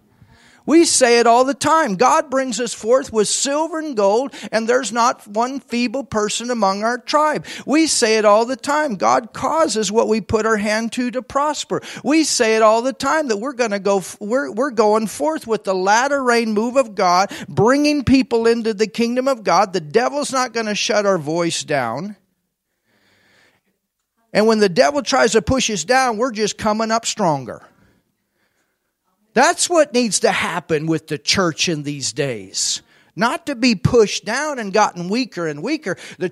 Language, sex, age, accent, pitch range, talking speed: German, male, 50-69, American, 195-265 Hz, 185 wpm